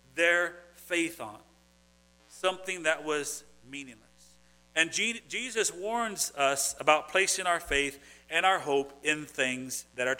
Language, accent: English, American